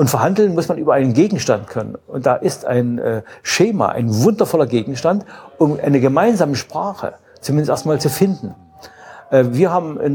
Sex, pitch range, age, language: male, 130-160 Hz, 60-79, German